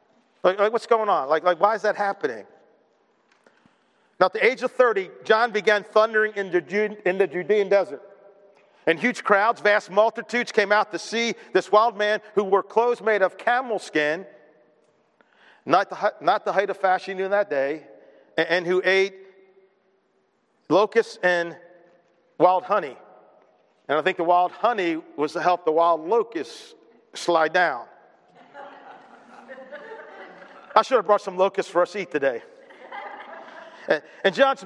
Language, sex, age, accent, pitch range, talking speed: English, male, 40-59, American, 180-230 Hz, 155 wpm